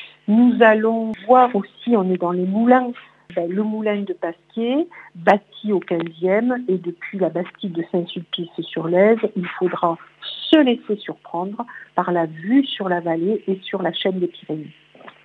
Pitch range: 175-220 Hz